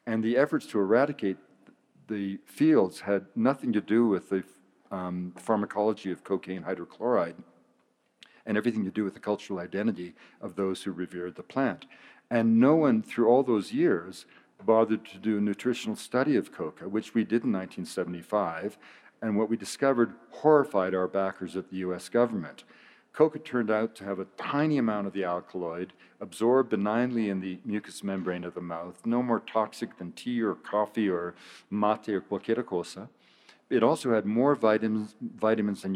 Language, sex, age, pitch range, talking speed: Spanish, male, 50-69, 95-115 Hz, 170 wpm